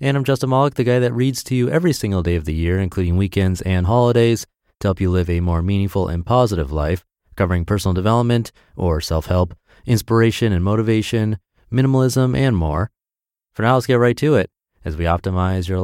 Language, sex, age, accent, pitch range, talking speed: English, male, 30-49, American, 85-115 Hz, 195 wpm